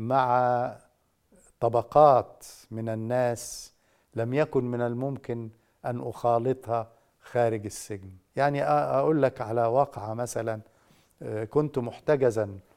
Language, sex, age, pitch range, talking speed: Arabic, male, 50-69, 115-135 Hz, 95 wpm